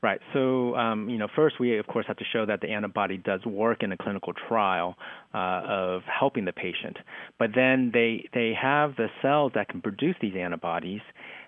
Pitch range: 100-115 Hz